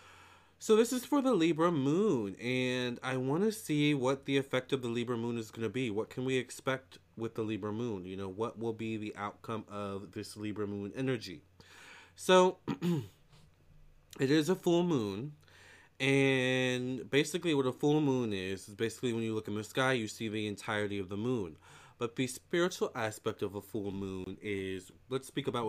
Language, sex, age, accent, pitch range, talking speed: English, male, 30-49, American, 105-130 Hz, 195 wpm